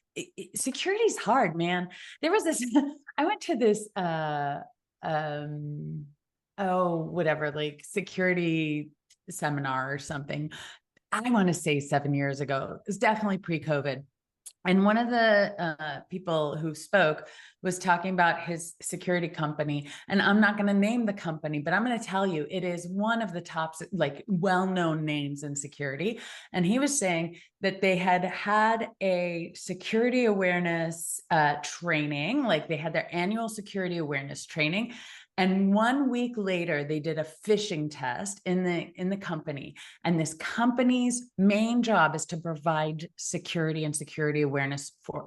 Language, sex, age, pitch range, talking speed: English, female, 30-49, 155-210 Hz, 155 wpm